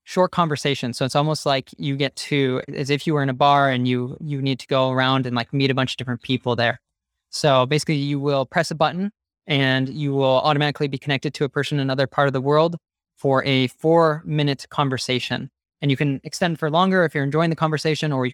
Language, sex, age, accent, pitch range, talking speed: English, male, 20-39, American, 130-150 Hz, 235 wpm